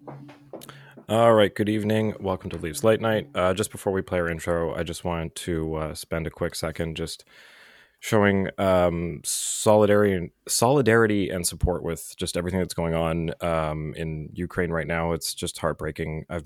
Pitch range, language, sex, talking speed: 80-100 Hz, English, male, 170 wpm